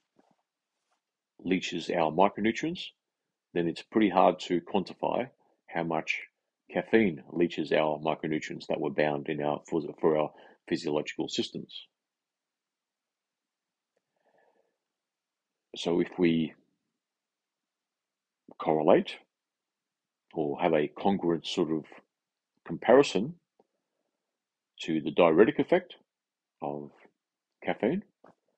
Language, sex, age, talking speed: English, male, 40-59, 90 wpm